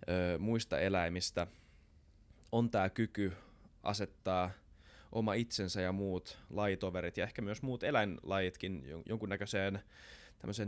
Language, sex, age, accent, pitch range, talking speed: Finnish, male, 20-39, native, 90-105 Hz, 100 wpm